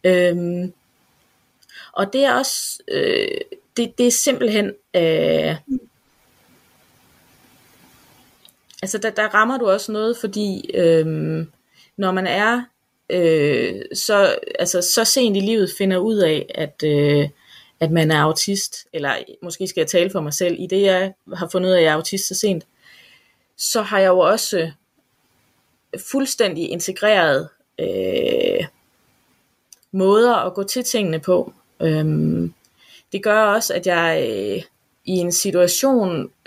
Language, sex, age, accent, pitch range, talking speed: Danish, female, 20-39, native, 170-225 Hz, 135 wpm